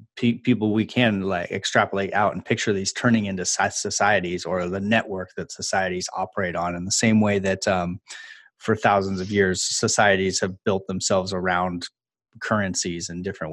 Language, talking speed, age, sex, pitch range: English, 165 wpm, 30-49, male, 95-115 Hz